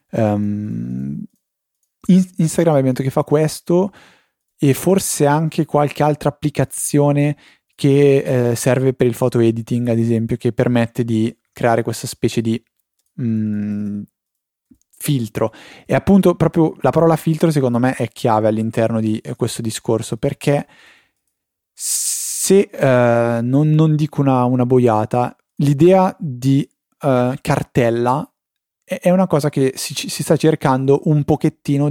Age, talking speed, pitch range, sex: 30-49, 125 wpm, 115-145 Hz, male